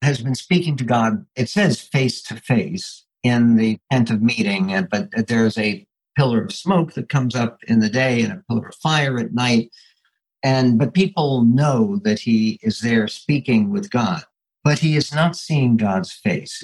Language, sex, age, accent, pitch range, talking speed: English, male, 60-79, American, 115-155 Hz, 190 wpm